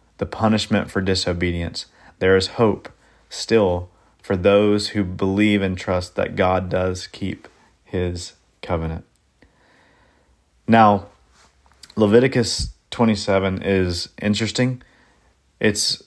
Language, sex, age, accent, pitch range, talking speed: English, male, 30-49, American, 95-110 Hz, 95 wpm